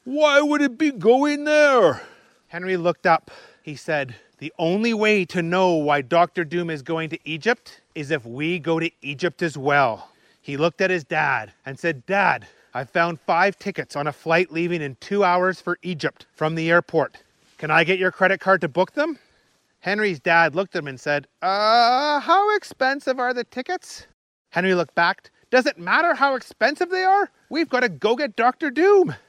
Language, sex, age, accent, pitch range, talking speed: English, male, 30-49, American, 160-225 Hz, 195 wpm